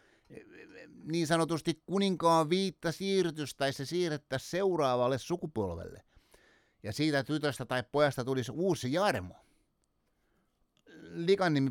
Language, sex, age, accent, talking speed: Finnish, male, 60-79, native, 95 wpm